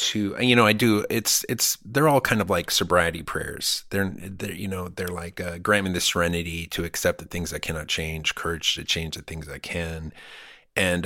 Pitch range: 90-125 Hz